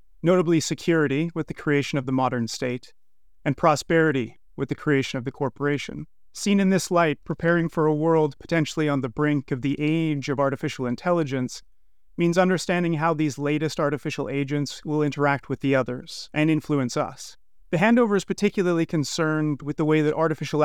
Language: English